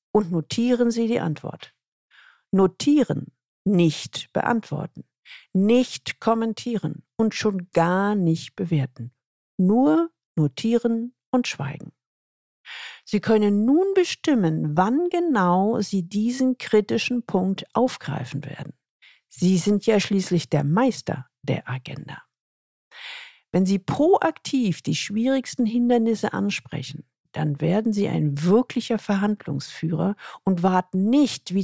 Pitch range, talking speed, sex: 160-230 Hz, 105 wpm, female